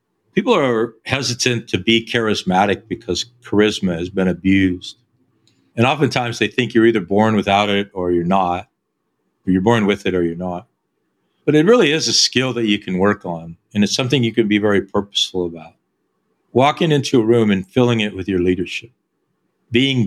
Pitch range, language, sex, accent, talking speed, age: 95-115 Hz, English, male, American, 185 wpm, 50-69